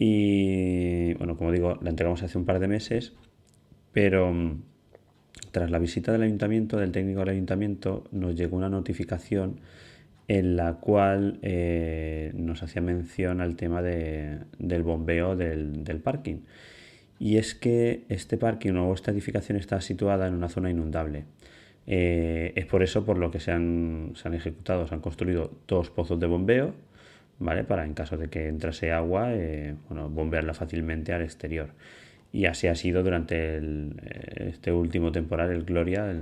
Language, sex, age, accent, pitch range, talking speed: Spanish, male, 30-49, Spanish, 85-100 Hz, 165 wpm